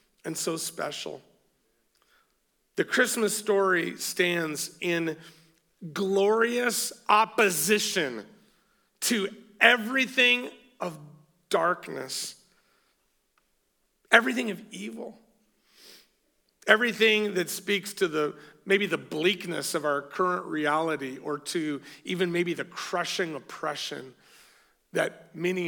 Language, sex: English, male